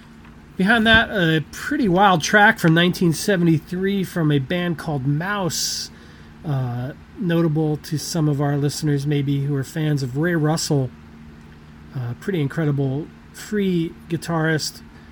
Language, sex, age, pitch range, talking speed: English, male, 40-59, 130-170 Hz, 125 wpm